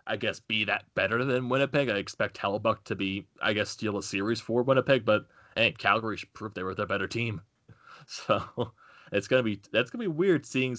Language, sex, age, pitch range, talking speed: English, male, 20-39, 100-115 Hz, 220 wpm